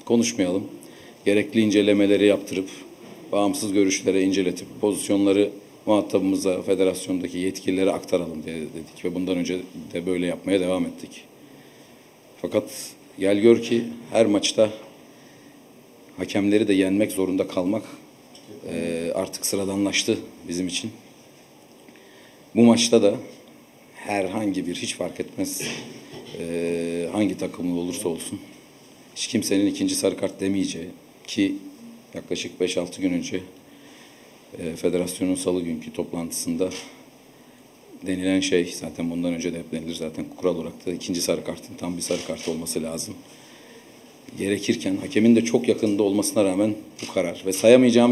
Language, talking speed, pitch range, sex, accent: Turkish, 125 wpm, 90-105 Hz, male, native